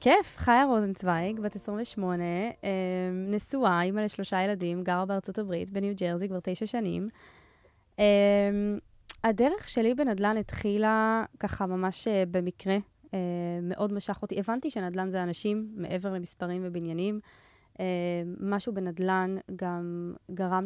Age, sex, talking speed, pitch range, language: 20-39, female, 110 wpm, 185-220 Hz, Hebrew